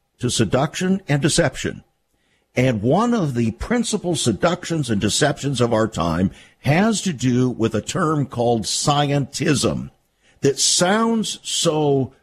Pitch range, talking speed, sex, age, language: 105-145 Hz, 130 wpm, male, 50-69, English